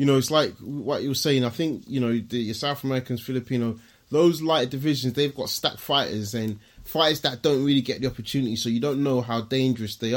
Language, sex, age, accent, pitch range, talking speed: English, male, 20-39, British, 115-145 Hz, 230 wpm